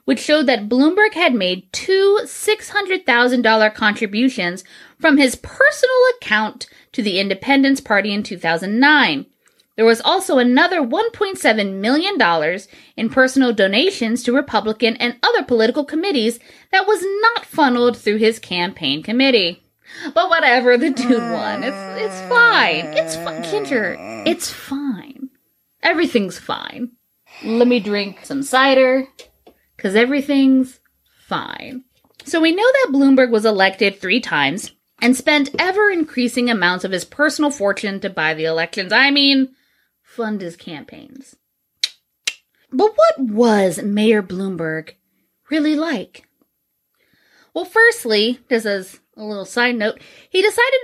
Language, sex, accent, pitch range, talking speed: English, female, American, 215-300 Hz, 125 wpm